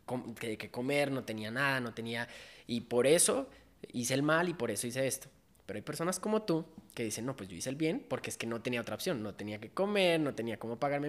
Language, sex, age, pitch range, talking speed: Spanish, male, 20-39, 110-145 Hz, 255 wpm